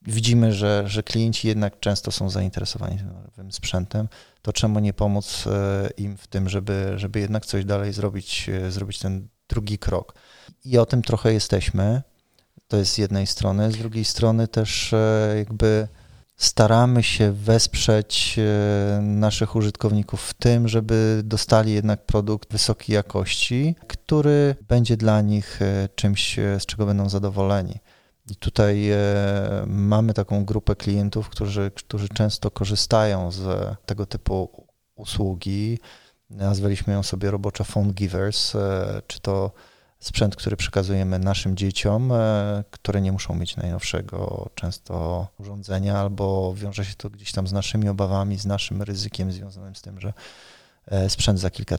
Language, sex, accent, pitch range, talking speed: Polish, male, native, 95-110 Hz, 135 wpm